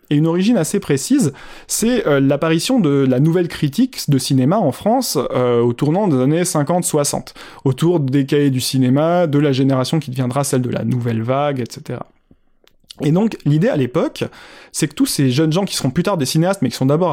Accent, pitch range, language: French, 135-180 Hz, French